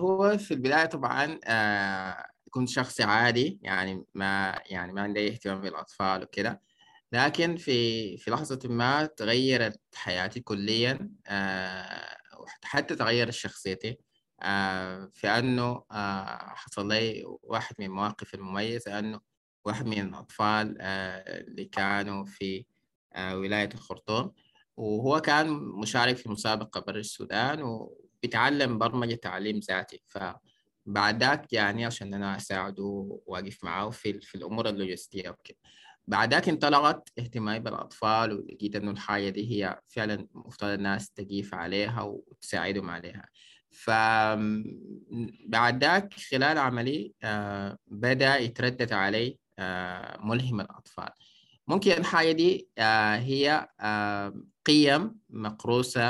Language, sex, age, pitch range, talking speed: Arabic, male, 20-39, 100-125 Hz, 110 wpm